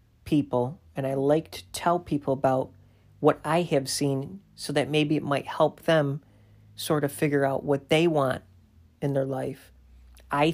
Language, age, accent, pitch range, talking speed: English, 40-59, American, 95-145 Hz, 170 wpm